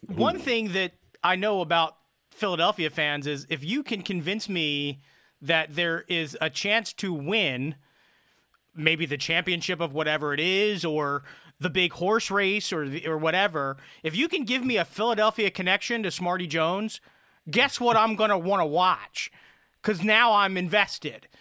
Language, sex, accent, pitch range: English, male, American, 165-220 Hz